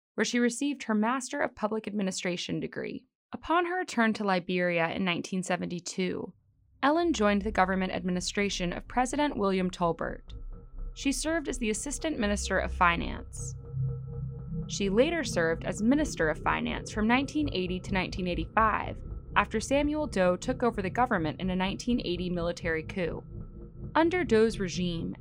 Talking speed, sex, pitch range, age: 140 wpm, female, 175-250 Hz, 20-39